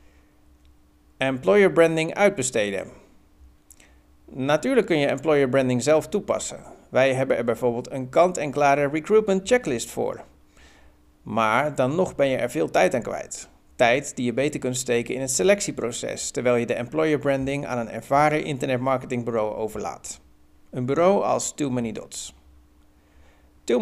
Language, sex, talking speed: Dutch, male, 140 wpm